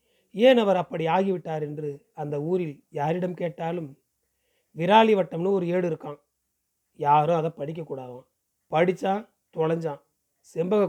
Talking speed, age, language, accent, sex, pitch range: 110 wpm, 40-59, Tamil, native, male, 160-200 Hz